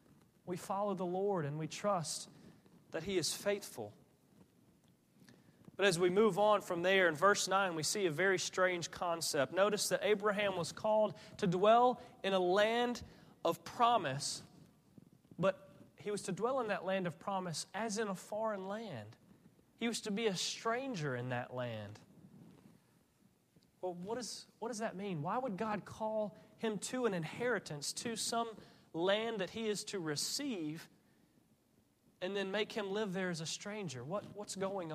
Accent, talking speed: American, 165 wpm